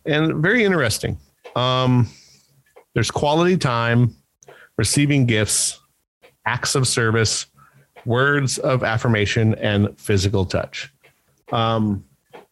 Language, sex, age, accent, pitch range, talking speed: English, male, 40-59, American, 100-130 Hz, 90 wpm